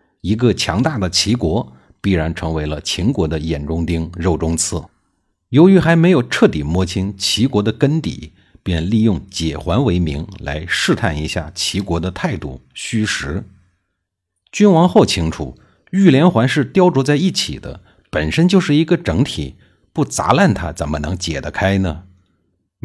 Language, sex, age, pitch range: Chinese, male, 50-69, 85-110 Hz